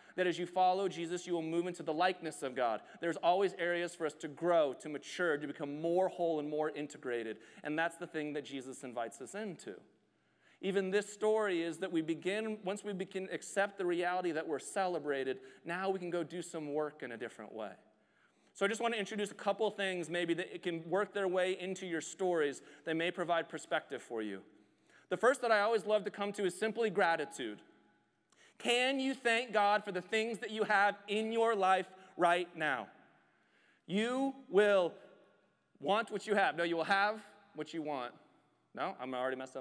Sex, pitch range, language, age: male, 145-195 Hz, English, 30-49